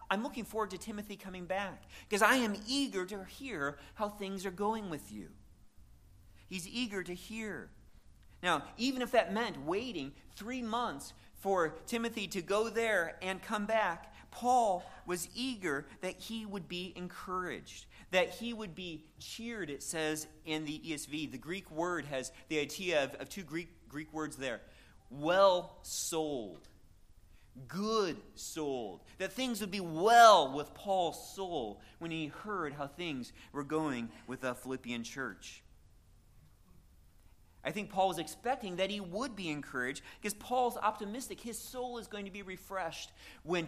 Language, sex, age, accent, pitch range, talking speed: English, male, 40-59, American, 150-215 Hz, 155 wpm